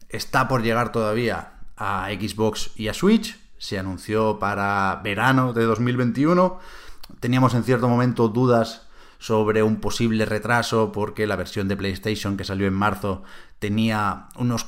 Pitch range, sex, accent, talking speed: 100-125 Hz, male, Spanish, 145 wpm